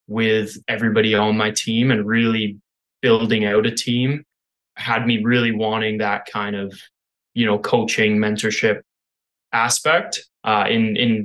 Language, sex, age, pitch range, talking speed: English, male, 20-39, 105-120 Hz, 140 wpm